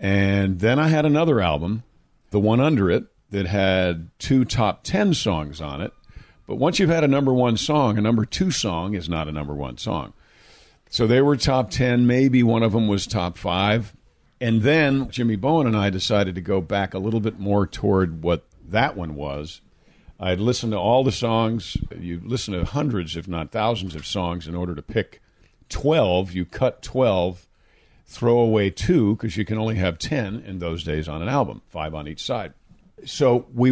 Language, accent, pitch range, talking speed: English, American, 85-115 Hz, 200 wpm